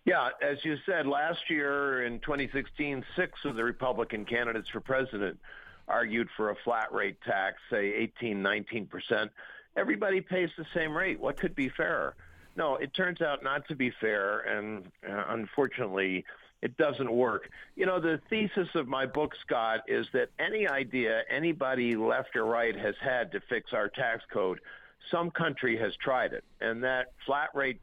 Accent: American